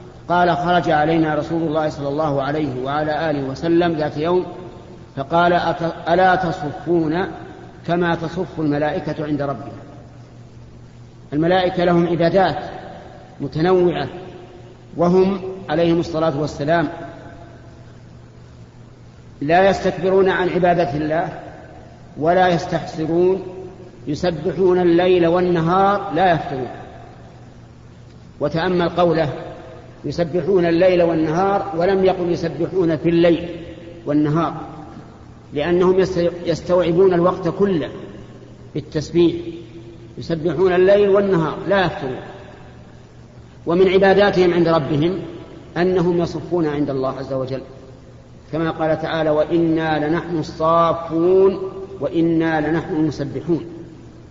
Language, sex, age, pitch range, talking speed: Arabic, male, 50-69, 150-180 Hz, 90 wpm